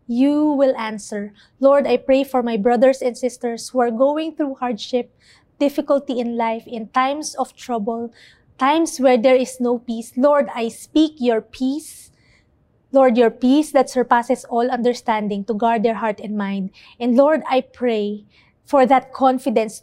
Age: 20-39